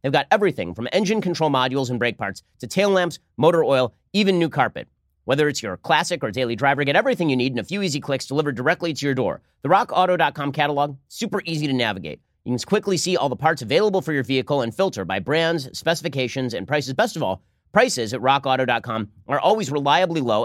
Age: 30-49